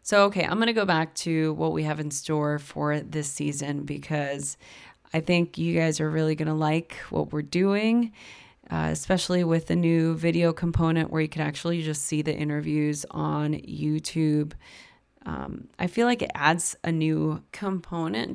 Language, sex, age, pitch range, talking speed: English, female, 20-39, 150-170 Hz, 180 wpm